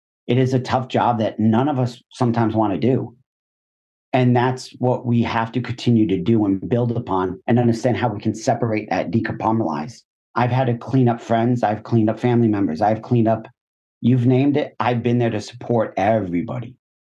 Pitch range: 110-125 Hz